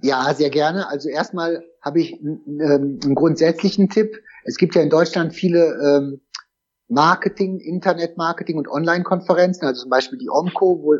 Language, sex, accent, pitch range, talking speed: German, male, German, 150-180 Hz, 160 wpm